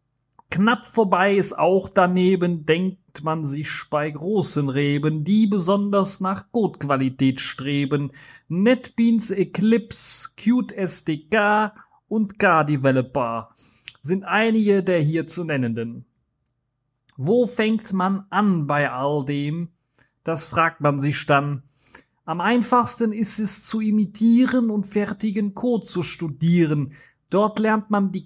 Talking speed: 115 wpm